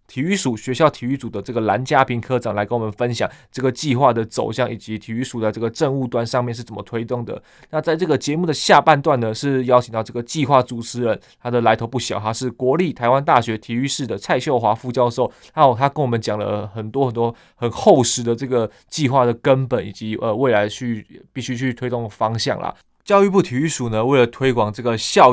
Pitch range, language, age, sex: 110-130 Hz, Chinese, 20-39, male